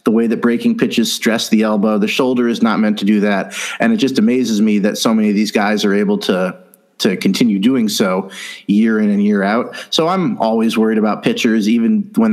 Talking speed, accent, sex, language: 230 wpm, American, male, English